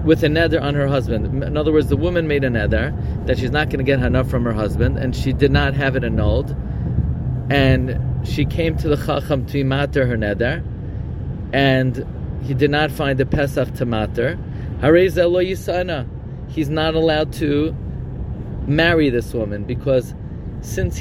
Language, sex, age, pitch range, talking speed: English, male, 30-49, 125-150 Hz, 170 wpm